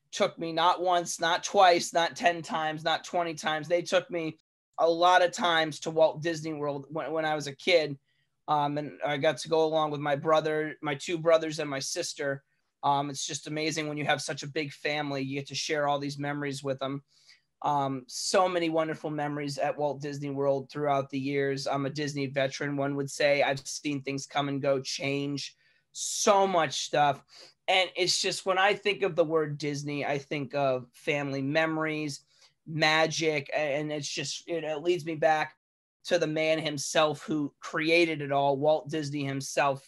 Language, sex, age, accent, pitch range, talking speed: English, male, 20-39, American, 140-160 Hz, 195 wpm